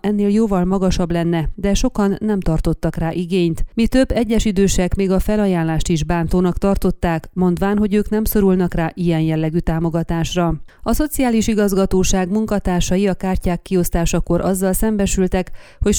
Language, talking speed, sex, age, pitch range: Hungarian, 145 wpm, female, 30-49, 170-200 Hz